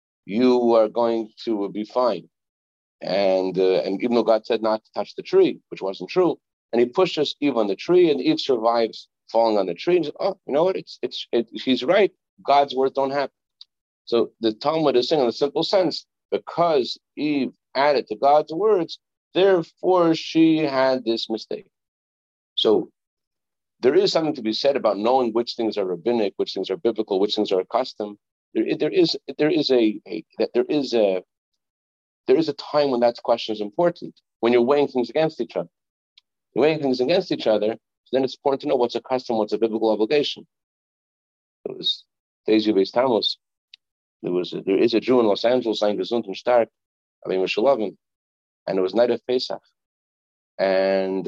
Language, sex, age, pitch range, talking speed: English, male, 50-69, 105-150 Hz, 180 wpm